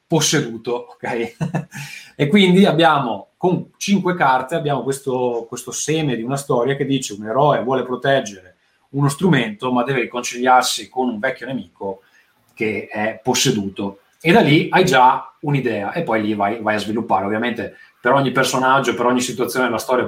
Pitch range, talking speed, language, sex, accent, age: 115-145 Hz, 165 wpm, Italian, male, native, 20-39